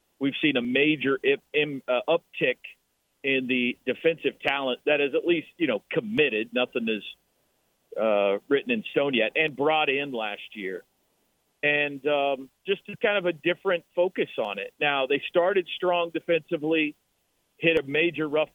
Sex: male